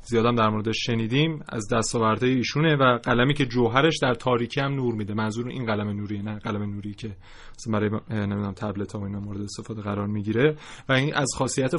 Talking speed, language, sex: 195 wpm, Persian, male